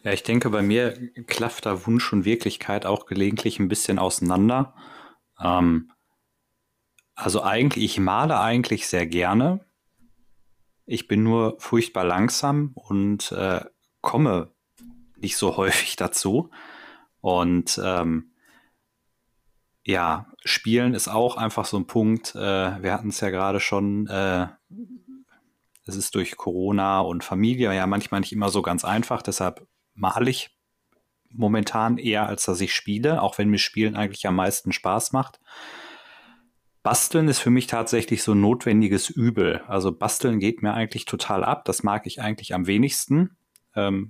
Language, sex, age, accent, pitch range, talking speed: German, male, 30-49, German, 95-115 Hz, 145 wpm